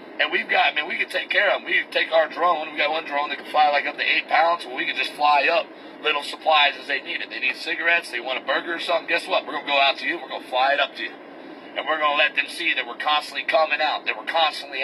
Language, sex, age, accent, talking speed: English, male, 50-69, American, 325 wpm